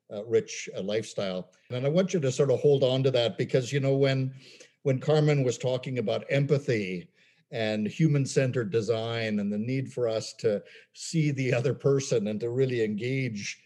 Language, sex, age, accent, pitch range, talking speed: English, male, 60-79, American, 115-150 Hz, 185 wpm